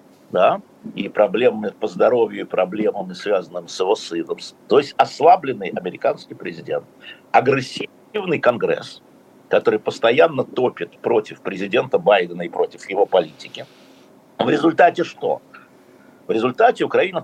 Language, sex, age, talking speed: Russian, male, 60-79, 120 wpm